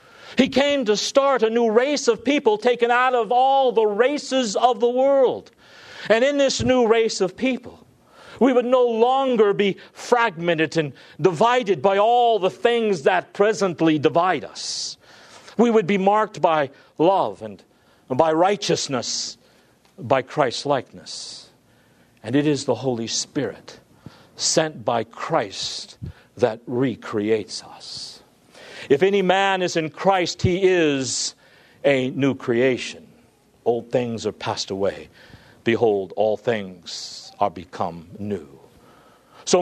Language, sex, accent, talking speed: English, male, American, 130 wpm